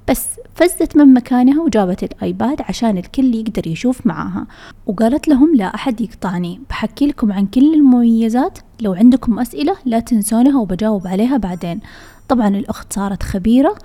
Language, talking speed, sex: Arabic, 145 wpm, female